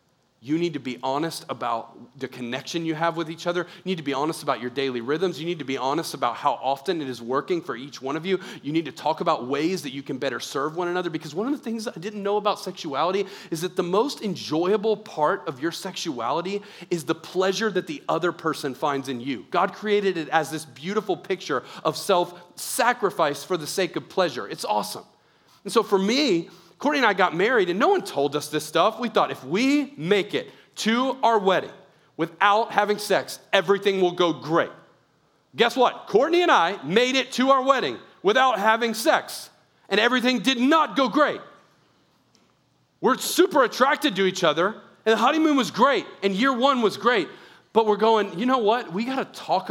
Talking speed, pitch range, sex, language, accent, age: 210 wpm, 155-215 Hz, male, English, American, 40-59